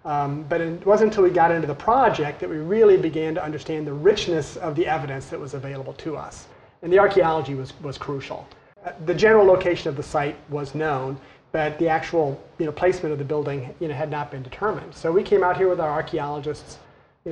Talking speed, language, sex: 220 wpm, English, male